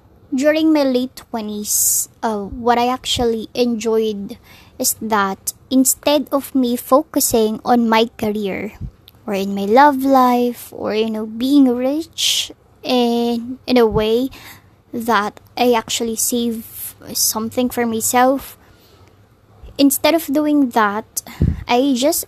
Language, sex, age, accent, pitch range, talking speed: Filipino, male, 20-39, native, 220-260 Hz, 120 wpm